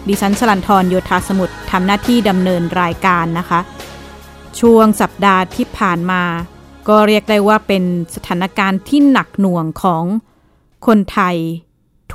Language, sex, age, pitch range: Thai, female, 20-39, 185-220 Hz